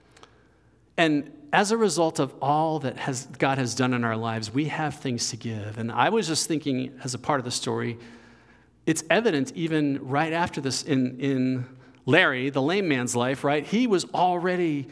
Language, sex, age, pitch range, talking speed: English, male, 50-69, 120-150 Hz, 190 wpm